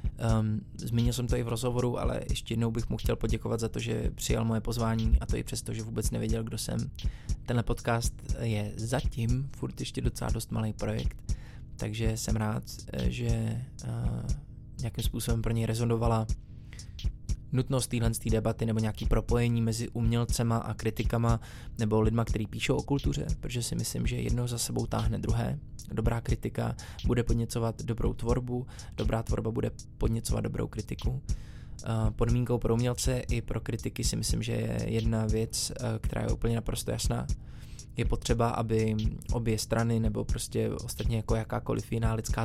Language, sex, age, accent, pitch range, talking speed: Czech, male, 20-39, native, 110-120 Hz, 160 wpm